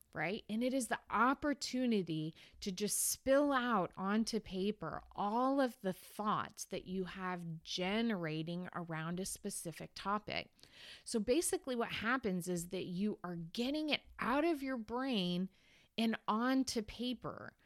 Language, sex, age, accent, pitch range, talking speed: English, female, 30-49, American, 185-250 Hz, 140 wpm